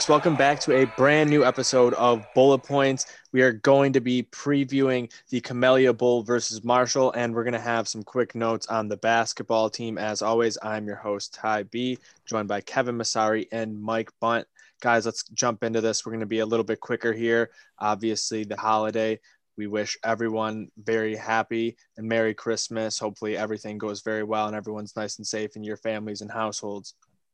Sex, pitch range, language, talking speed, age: male, 110-125 Hz, English, 185 wpm, 20-39